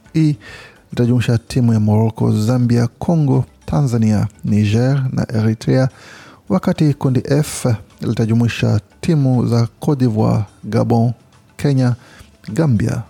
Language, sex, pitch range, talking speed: Swahili, male, 110-130 Hz, 100 wpm